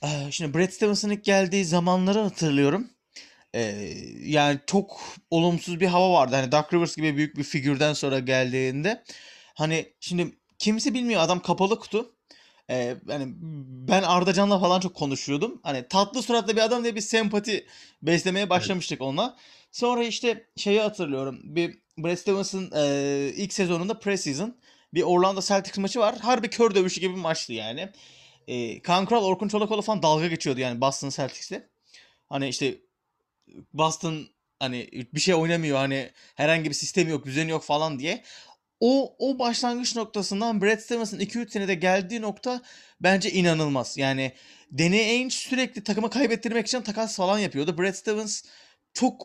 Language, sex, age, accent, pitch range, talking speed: Turkish, male, 30-49, native, 150-215 Hz, 145 wpm